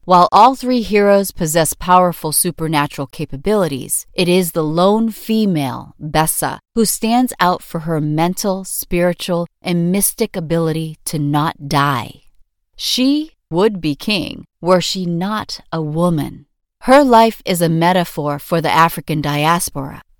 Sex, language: female, English